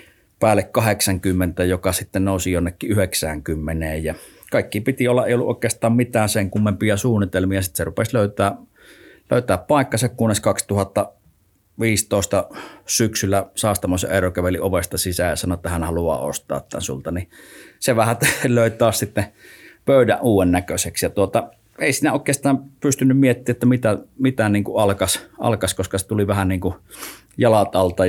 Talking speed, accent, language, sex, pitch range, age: 145 wpm, native, Finnish, male, 90-105 Hz, 30-49